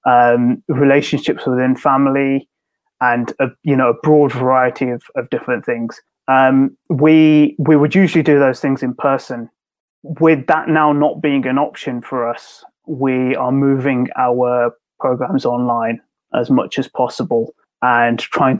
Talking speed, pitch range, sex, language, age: 150 wpm, 120-140 Hz, male, Punjabi, 20-39